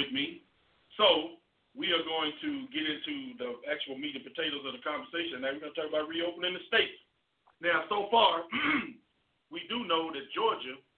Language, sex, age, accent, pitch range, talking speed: English, male, 50-69, American, 165-265 Hz, 180 wpm